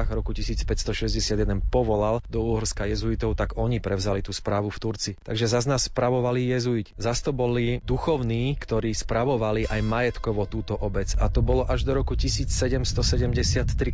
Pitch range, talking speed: 100-115 Hz, 150 wpm